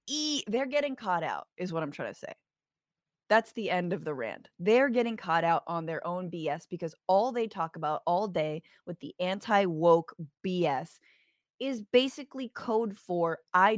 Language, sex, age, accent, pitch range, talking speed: English, female, 20-39, American, 170-240 Hz, 185 wpm